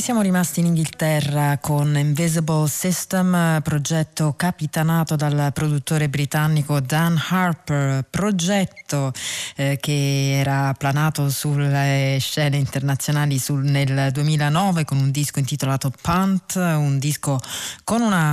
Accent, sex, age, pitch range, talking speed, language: native, female, 30-49, 140-170 Hz, 110 wpm, Italian